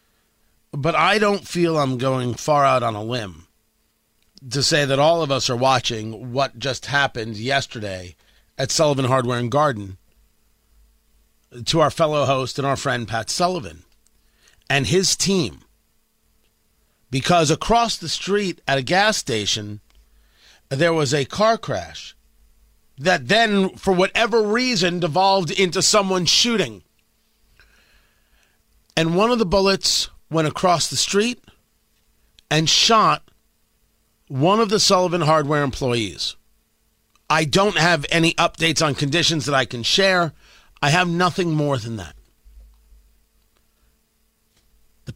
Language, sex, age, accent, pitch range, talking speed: English, male, 40-59, American, 105-175 Hz, 130 wpm